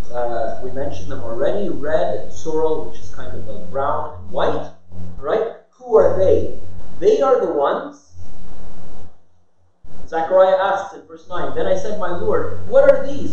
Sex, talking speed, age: male, 165 wpm, 30-49